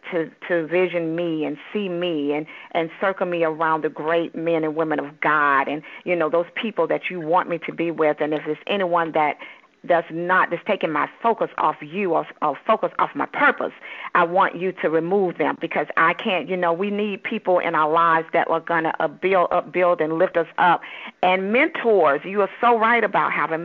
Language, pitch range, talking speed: English, 170-220 Hz, 225 wpm